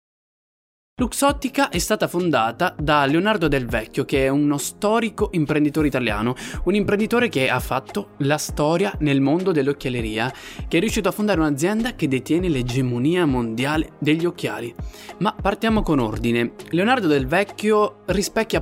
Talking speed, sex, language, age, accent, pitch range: 140 wpm, male, Italian, 20-39, native, 140-200 Hz